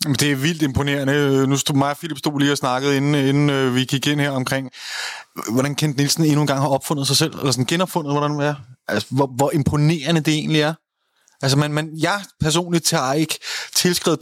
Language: Danish